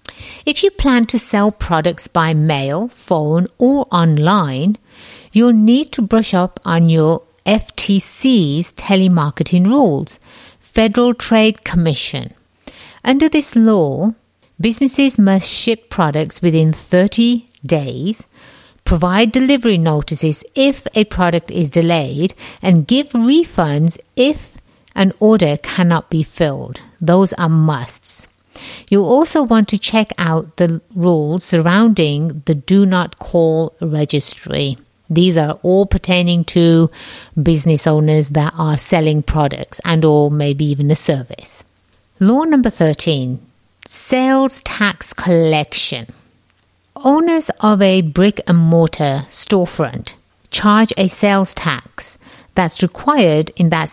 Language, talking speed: English, 120 wpm